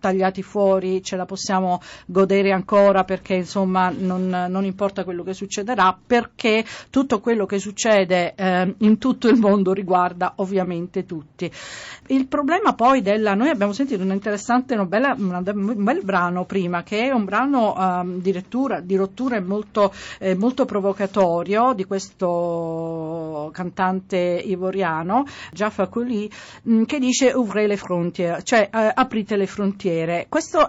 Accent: native